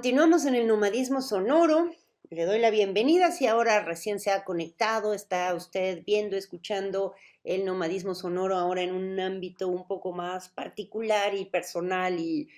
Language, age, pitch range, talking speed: Spanish, 40-59, 165-210 Hz, 155 wpm